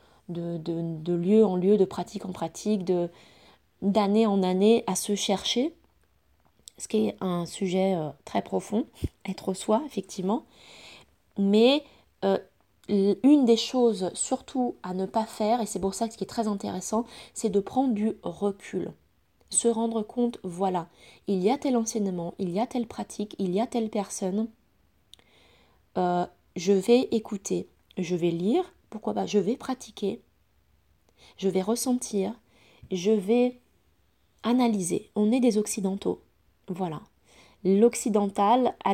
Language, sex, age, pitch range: French, female, 20-39, 185-225 Hz